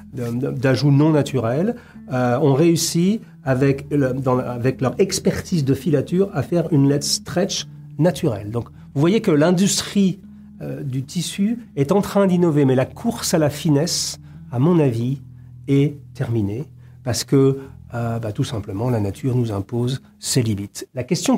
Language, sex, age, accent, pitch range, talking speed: French, male, 40-59, French, 120-165 Hz, 160 wpm